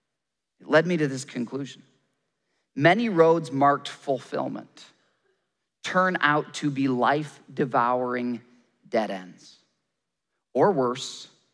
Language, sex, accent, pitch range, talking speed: English, male, American, 130-180 Hz, 100 wpm